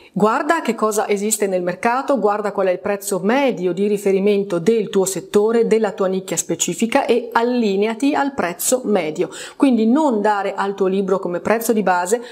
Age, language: 30-49, Italian